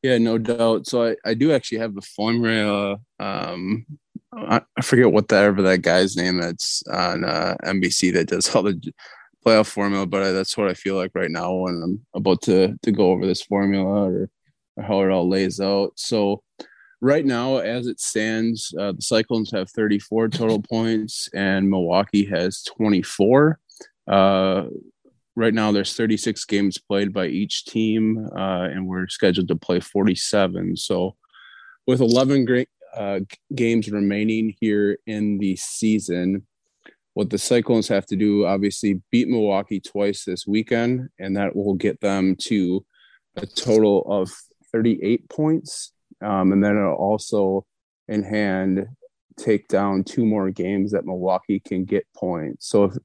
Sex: male